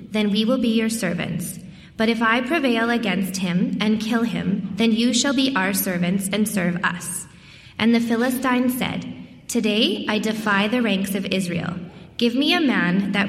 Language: English